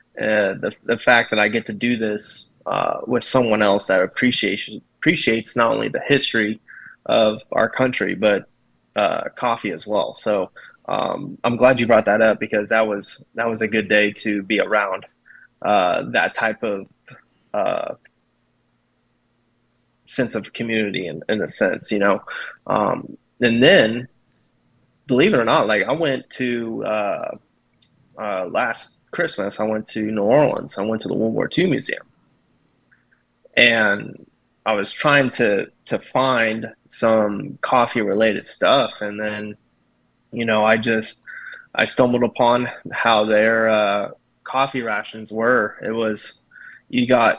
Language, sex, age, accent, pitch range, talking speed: English, male, 20-39, American, 105-120 Hz, 150 wpm